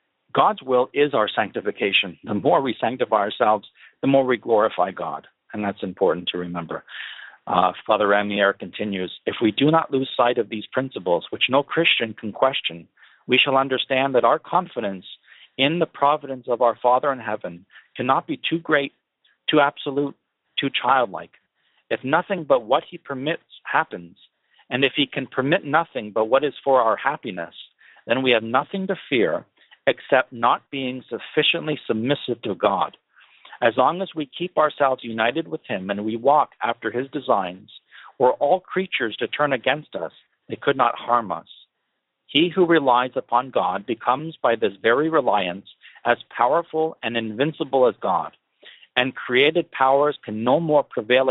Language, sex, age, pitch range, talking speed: English, male, 50-69, 115-145 Hz, 165 wpm